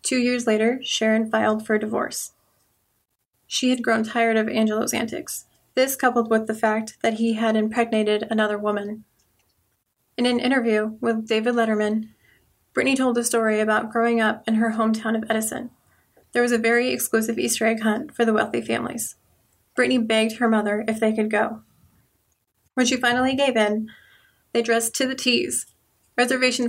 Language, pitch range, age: English, 215-240 Hz, 20-39